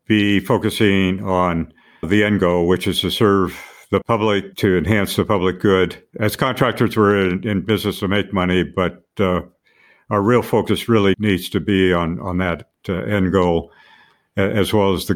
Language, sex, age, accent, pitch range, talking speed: English, male, 60-79, American, 95-110 Hz, 180 wpm